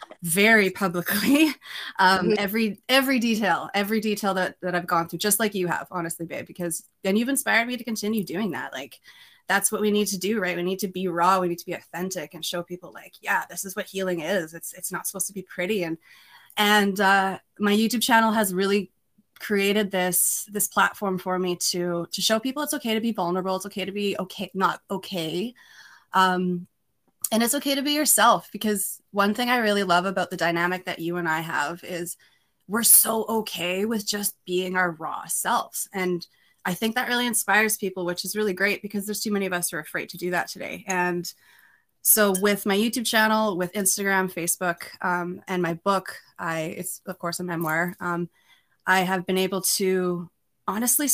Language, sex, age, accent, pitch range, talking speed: English, female, 20-39, American, 180-210 Hz, 205 wpm